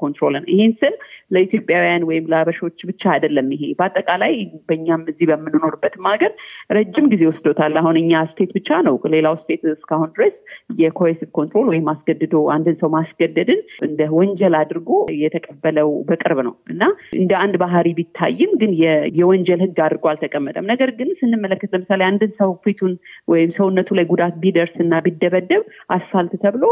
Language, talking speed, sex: Amharic, 65 wpm, female